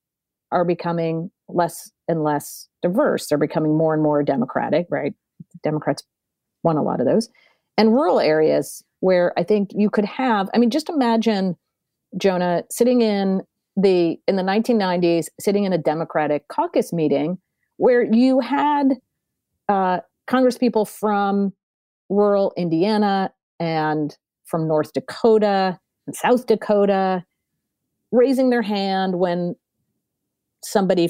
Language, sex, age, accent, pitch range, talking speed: English, female, 40-59, American, 170-230 Hz, 125 wpm